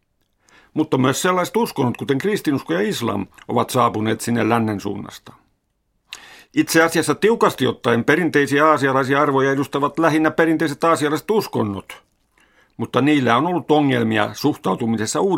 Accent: native